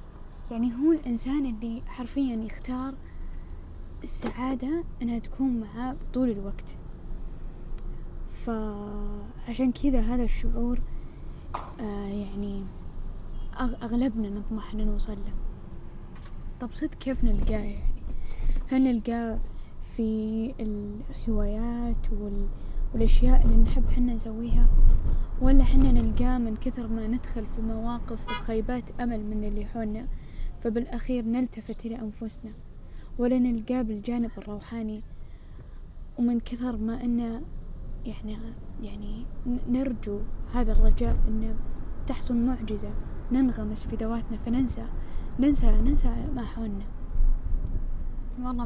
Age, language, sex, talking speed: 10-29, Arabic, female, 100 wpm